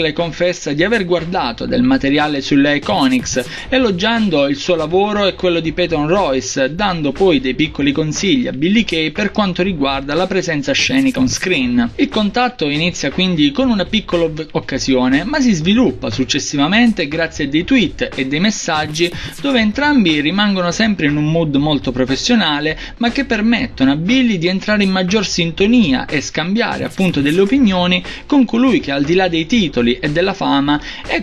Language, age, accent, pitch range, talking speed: Italian, 20-39, native, 150-215 Hz, 170 wpm